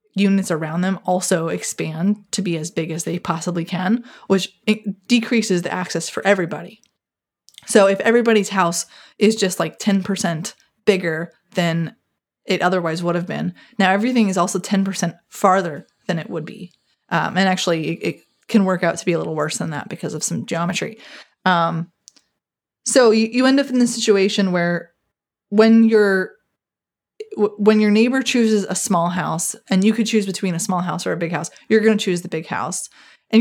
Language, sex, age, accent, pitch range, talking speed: English, female, 20-39, American, 175-215 Hz, 185 wpm